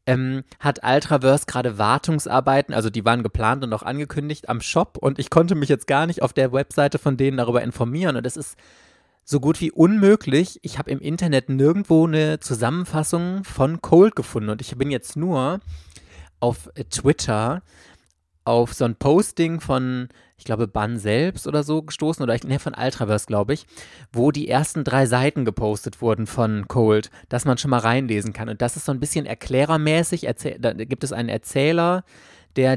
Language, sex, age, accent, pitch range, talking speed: German, male, 20-39, German, 120-150 Hz, 185 wpm